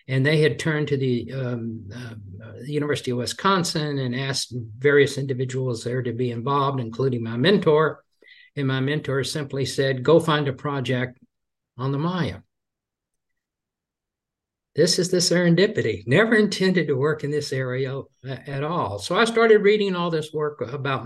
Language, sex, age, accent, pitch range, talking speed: English, male, 60-79, American, 125-155 Hz, 155 wpm